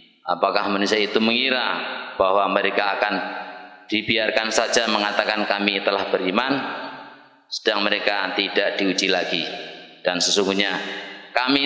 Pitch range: 95-120 Hz